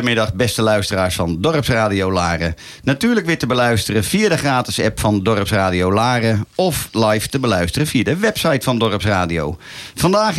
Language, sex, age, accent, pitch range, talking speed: Dutch, male, 50-69, Dutch, 105-140 Hz, 155 wpm